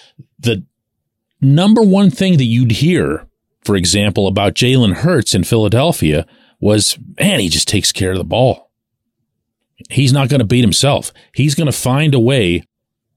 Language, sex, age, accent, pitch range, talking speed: English, male, 40-59, American, 95-135 Hz, 160 wpm